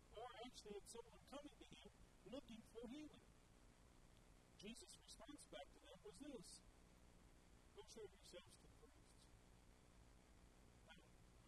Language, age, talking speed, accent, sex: English, 50-69, 125 wpm, American, male